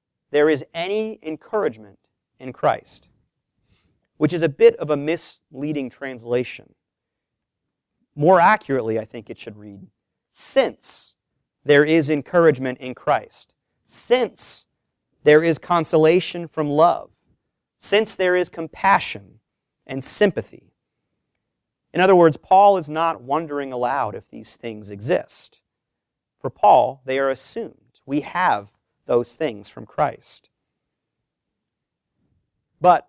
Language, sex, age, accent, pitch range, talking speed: English, male, 40-59, American, 130-175 Hz, 115 wpm